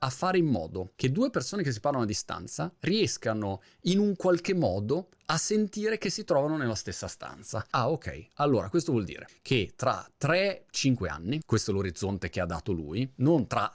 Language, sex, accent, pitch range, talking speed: Italian, male, native, 115-195 Hz, 190 wpm